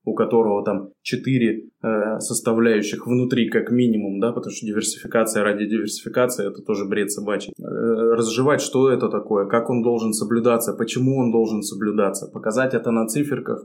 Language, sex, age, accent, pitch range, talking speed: Russian, male, 20-39, native, 110-125 Hz, 160 wpm